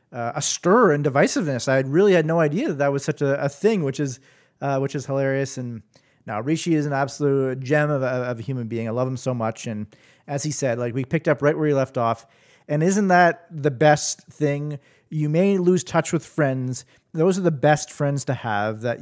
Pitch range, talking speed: 130-160 Hz, 235 wpm